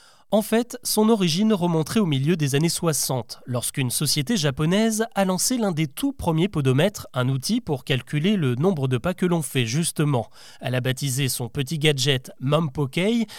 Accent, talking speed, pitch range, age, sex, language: French, 175 wpm, 140-205 Hz, 30-49, male, French